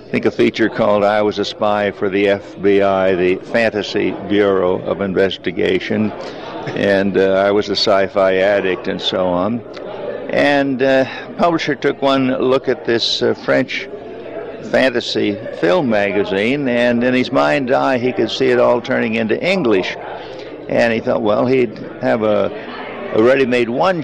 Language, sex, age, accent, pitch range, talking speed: English, male, 60-79, American, 100-120 Hz, 160 wpm